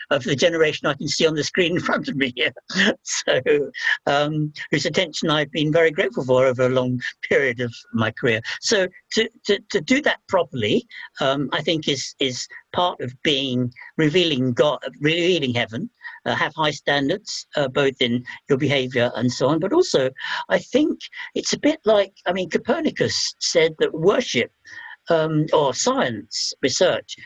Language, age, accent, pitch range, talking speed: English, 60-79, British, 135-205 Hz, 175 wpm